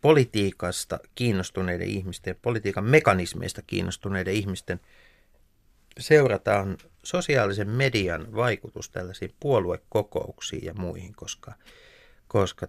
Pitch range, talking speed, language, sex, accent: 90-110 Hz, 80 wpm, Finnish, male, native